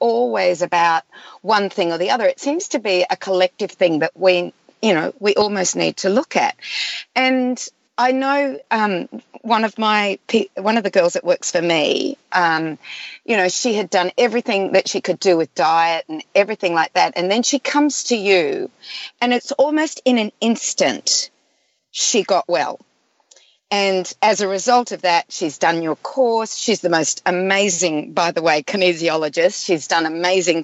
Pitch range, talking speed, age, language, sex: 180-255 Hz, 180 wpm, 40-59, English, female